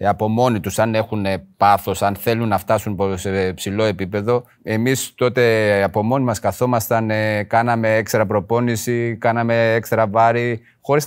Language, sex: Greek, male